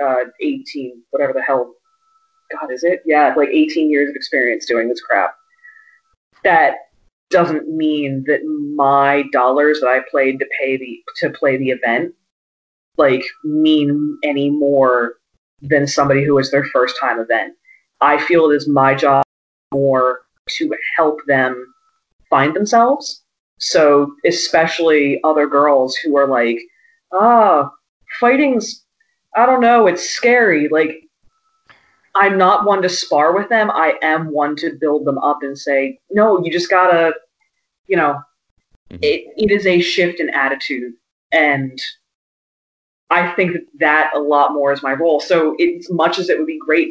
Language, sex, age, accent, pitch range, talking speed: English, female, 20-39, American, 140-190 Hz, 155 wpm